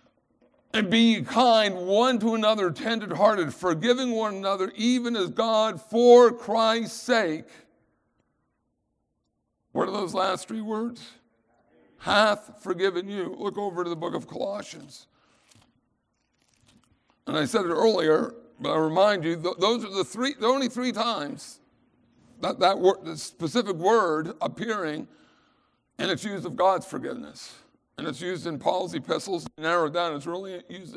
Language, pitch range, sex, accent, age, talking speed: English, 185-230 Hz, male, American, 60-79, 145 wpm